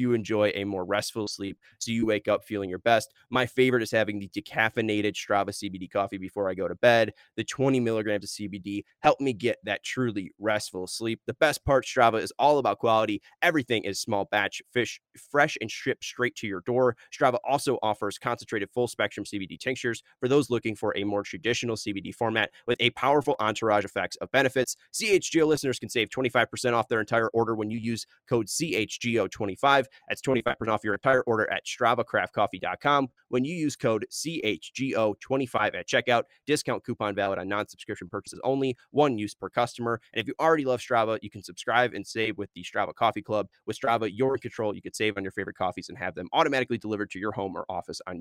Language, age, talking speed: English, 20-39, 200 wpm